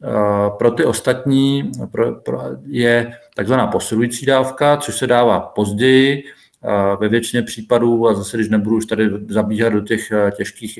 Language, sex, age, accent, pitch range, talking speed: Czech, male, 40-59, native, 110-120 Hz, 135 wpm